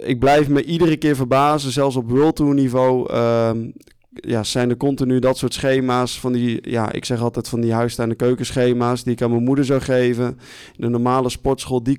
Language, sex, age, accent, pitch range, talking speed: Dutch, male, 20-39, Dutch, 120-135 Hz, 205 wpm